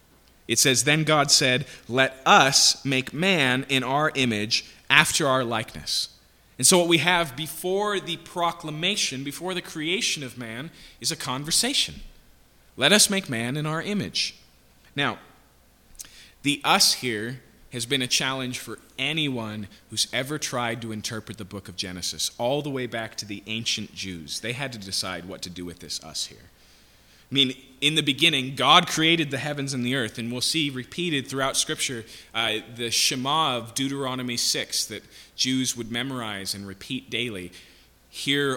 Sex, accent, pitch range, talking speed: male, American, 105-135 Hz, 170 wpm